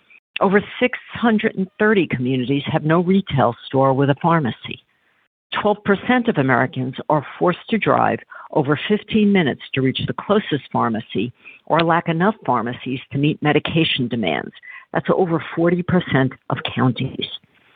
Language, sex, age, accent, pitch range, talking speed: English, female, 50-69, American, 135-170 Hz, 130 wpm